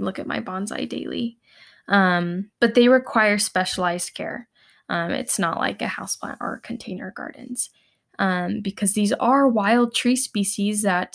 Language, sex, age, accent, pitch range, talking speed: English, female, 10-29, American, 185-225 Hz, 150 wpm